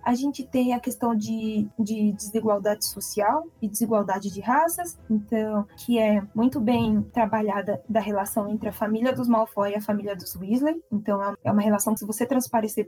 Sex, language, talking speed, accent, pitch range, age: female, Portuguese, 180 wpm, Brazilian, 210-260 Hz, 10-29